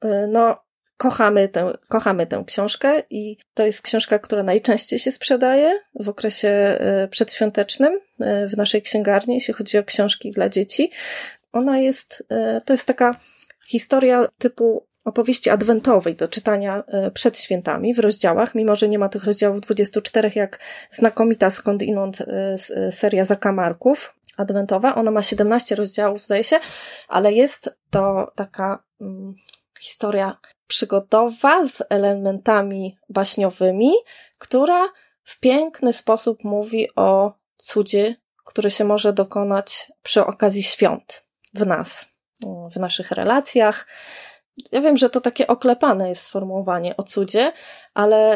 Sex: female